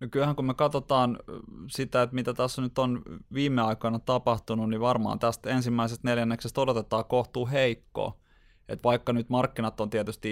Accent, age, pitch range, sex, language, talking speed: native, 20-39, 105-120 Hz, male, Finnish, 155 wpm